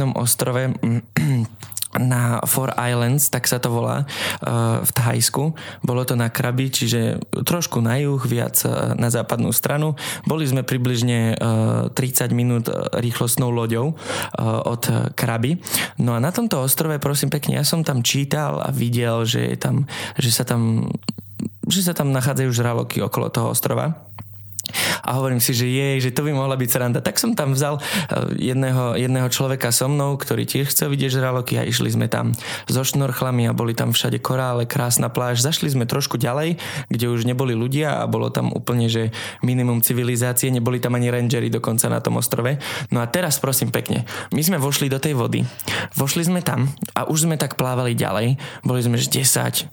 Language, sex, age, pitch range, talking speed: Slovak, male, 20-39, 120-140 Hz, 170 wpm